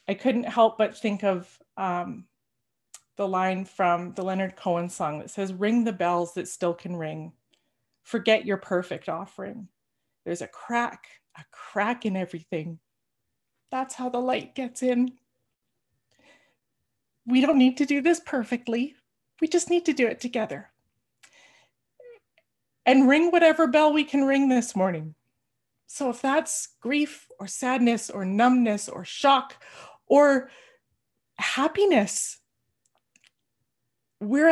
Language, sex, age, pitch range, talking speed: English, female, 30-49, 190-260 Hz, 130 wpm